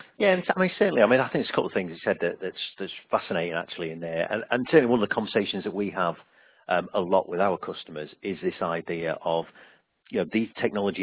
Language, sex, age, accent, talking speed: English, male, 40-59, British, 250 wpm